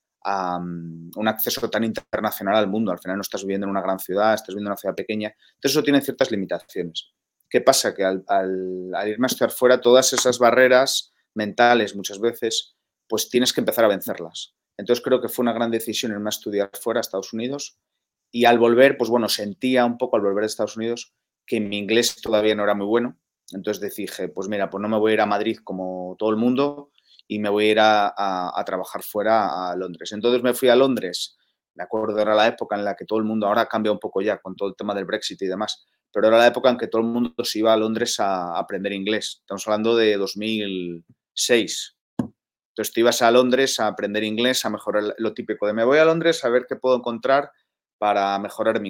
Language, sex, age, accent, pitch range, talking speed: Spanish, male, 30-49, Spanish, 100-120 Hz, 230 wpm